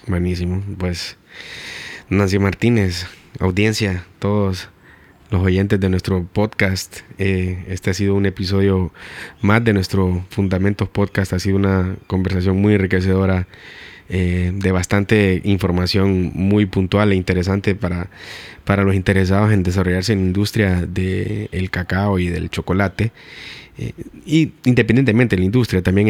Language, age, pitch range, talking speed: Spanish, 20-39, 90-100 Hz, 130 wpm